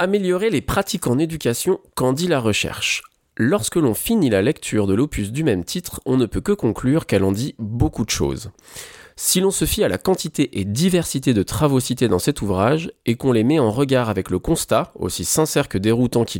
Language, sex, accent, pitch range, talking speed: French, male, French, 105-150 Hz, 215 wpm